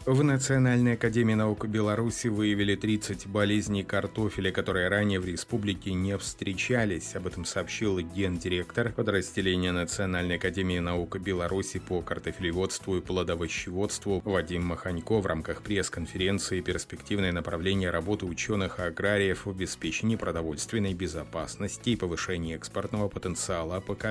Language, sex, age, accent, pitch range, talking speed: Russian, male, 30-49, native, 90-105 Hz, 120 wpm